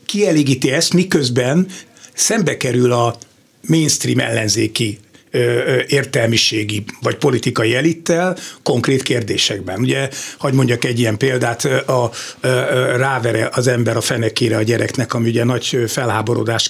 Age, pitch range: 60-79, 115-160 Hz